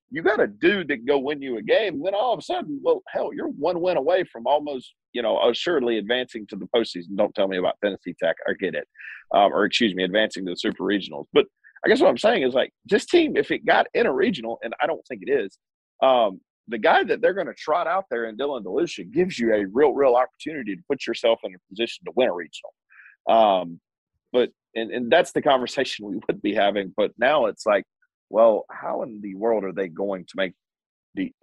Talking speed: 240 wpm